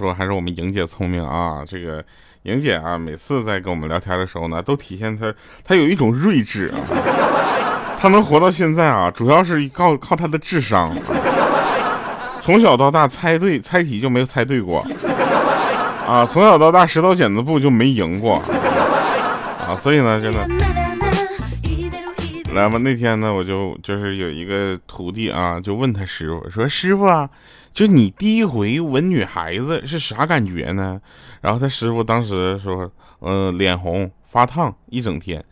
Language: Chinese